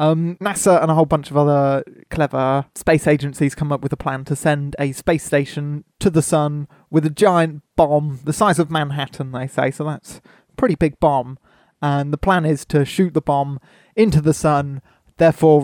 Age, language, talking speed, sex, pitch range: 20-39, English, 200 wpm, male, 135-155 Hz